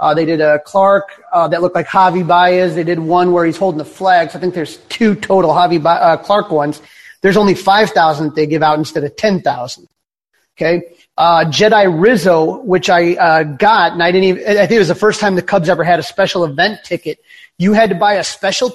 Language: English